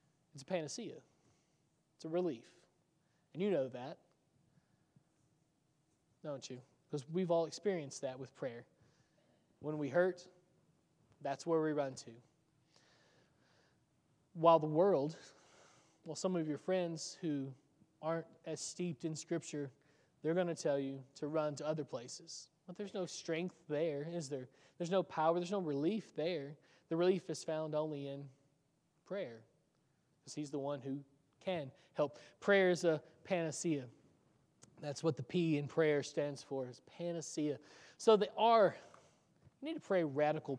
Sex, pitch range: male, 145-180 Hz